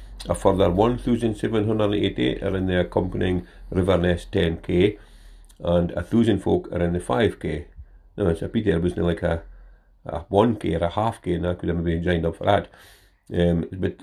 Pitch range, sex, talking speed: 85-95 Hz, male, 180 wpm